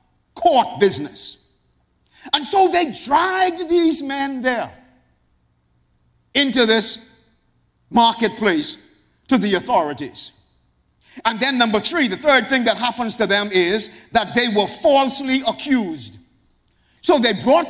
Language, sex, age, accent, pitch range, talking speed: English, male, 50-69, American, 200-285 Hz, 120 wpm